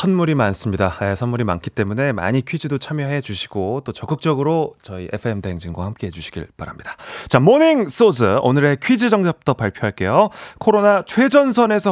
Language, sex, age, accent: Korean, male, 30-49, native